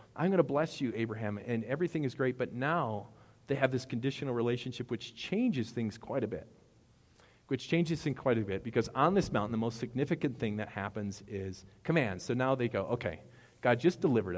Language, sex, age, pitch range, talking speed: English, male, 40-59, 105-140 Hz, 205 wpm